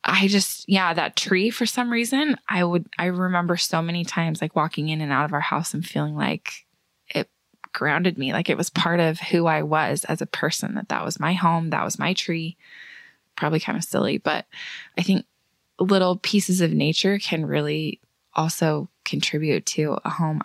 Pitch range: 155-185 Hz